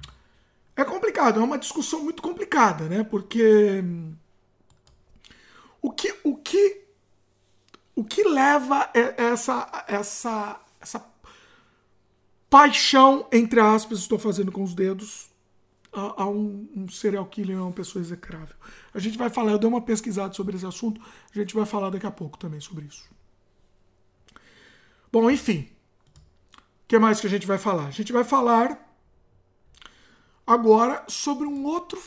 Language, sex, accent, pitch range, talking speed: Portuguese, male, Brazilian, 185-270 Hz, 140 wpm